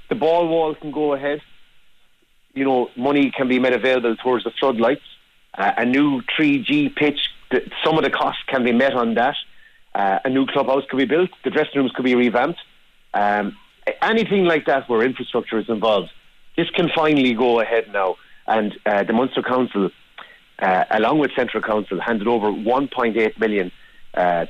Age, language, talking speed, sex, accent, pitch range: 30-49, English, 180 wpm, male, Irish, 110-145 Hz